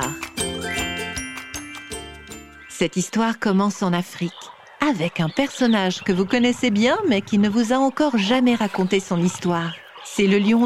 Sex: female